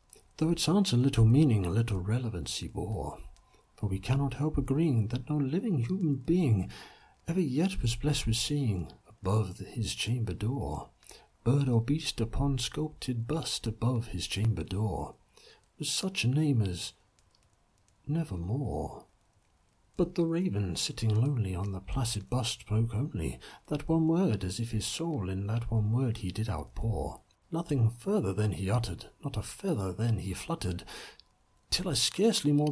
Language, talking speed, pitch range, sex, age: English, 160 wpm, 105-155 Hz, male, 60-79